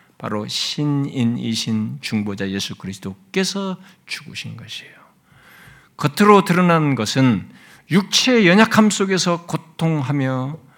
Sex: male